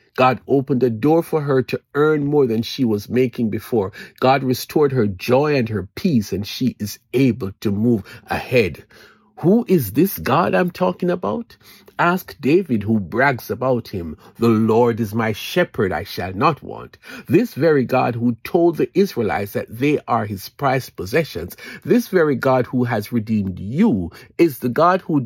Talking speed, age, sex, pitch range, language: 175 wpm, 50-69, male, 110-150 Hz, English